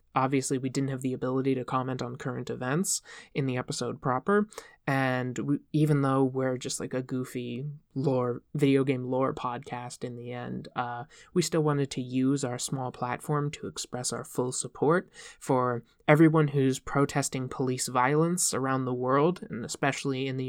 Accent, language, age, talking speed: American, English, 20-39, 170 wpm